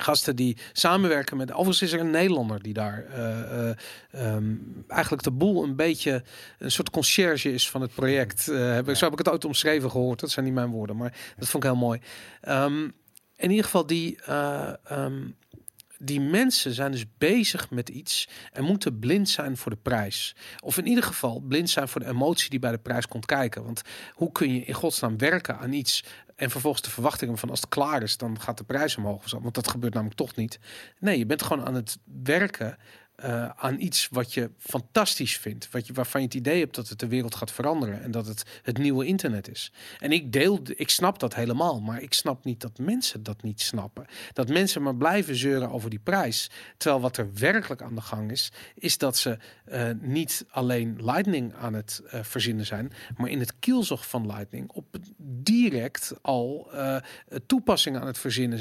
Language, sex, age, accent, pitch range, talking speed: Dutch, male, 40-59, Dutch, 120-150 Hz, 210 wpm